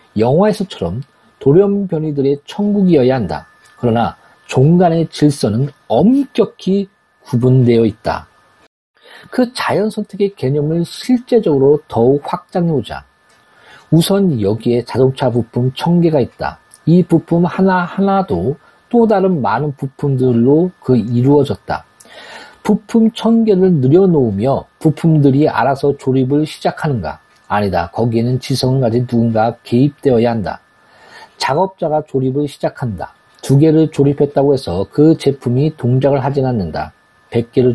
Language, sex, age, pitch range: Korean, male, 40-59, 125-170 Hz